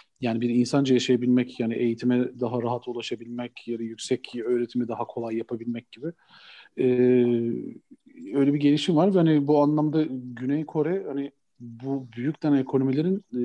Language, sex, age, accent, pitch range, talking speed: Turkish, male, 40-59, native, 120-145 Hz, 140 wpm